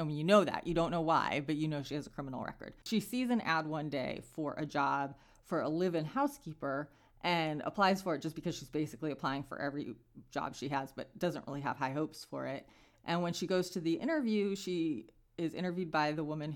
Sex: female